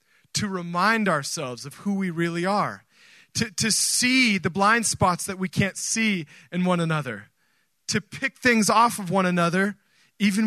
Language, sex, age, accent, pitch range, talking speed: English, male, 30-49, American, 155-200 Hz, 165 wpm